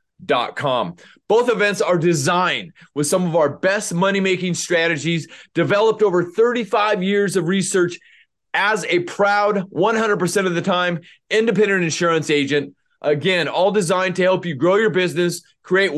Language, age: English, 30-49